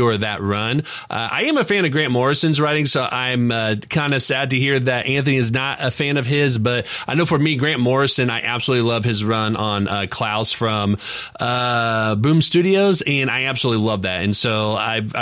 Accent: American